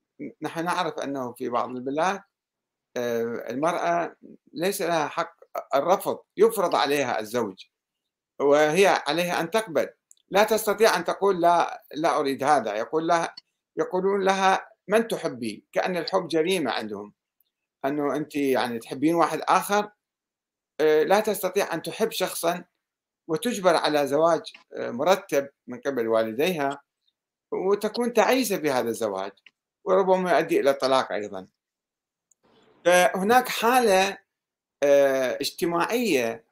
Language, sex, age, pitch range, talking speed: Arabic, male, 60-79, 140-195 Hz, 110 wpm